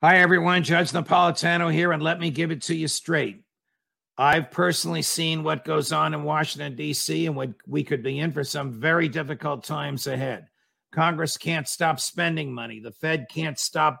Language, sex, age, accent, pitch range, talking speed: English, male, 50-69, American, 135-160 Hz, 185 wpm